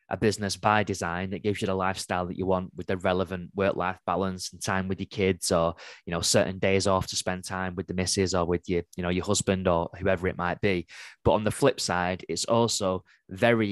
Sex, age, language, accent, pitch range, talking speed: male, 20-39, English, British, 95-105 Hz, 235 wpm